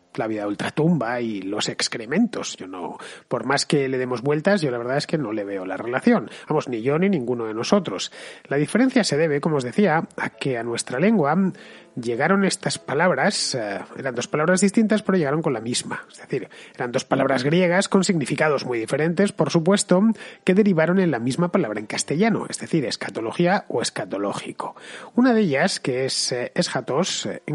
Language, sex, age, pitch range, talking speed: Spanish, male, 30-49, 125-185 Hz, 190 wpm